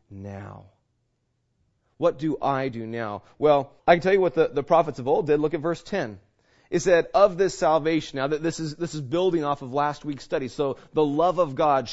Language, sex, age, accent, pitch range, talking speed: English, male, 30-49, American, 130-170 Hz, 220 wpm